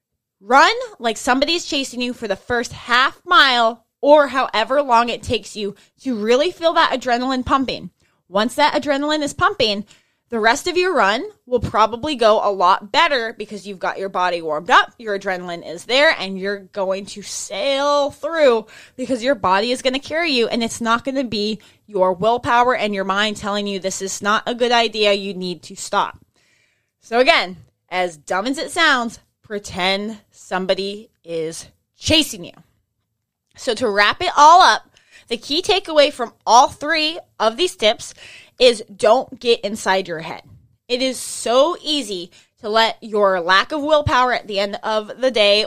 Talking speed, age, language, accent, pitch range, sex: 175 wpm, 20-39, English, American, 195-265 Hz, female